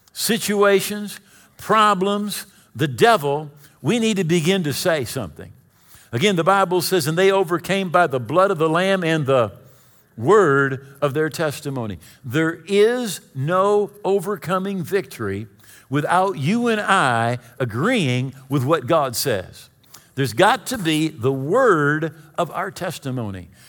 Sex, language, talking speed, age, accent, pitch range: male, English, 135 wpm, 50-69, American, 140-190 Hz